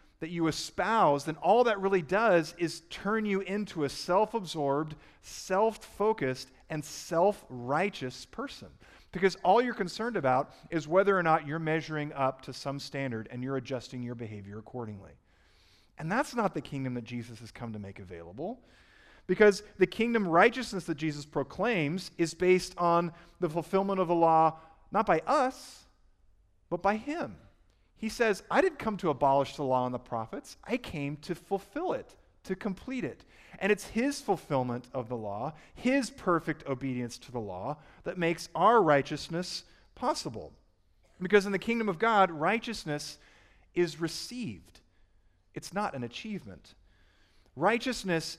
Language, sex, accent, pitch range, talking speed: English, male, American, 125-195 Hz, 155 wpm